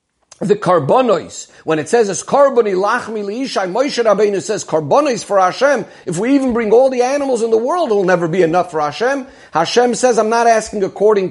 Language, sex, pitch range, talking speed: English, male, 175-235 Hz, 200 wpm